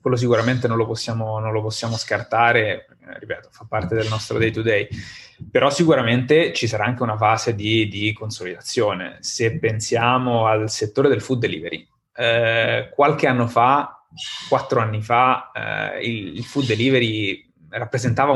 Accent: native